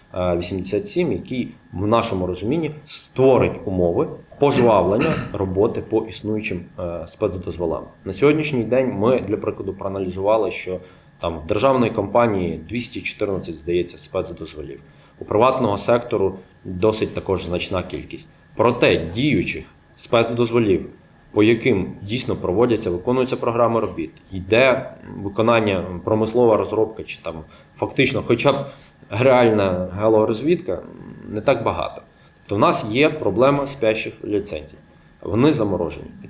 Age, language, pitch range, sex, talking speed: 20-39, Ukrainian, 95-130 Hz, male, 110 wpm